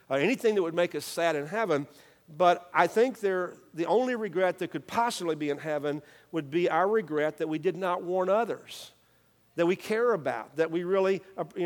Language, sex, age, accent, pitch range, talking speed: English, male, 50-69, American, 170-220 Hz, 195 wpm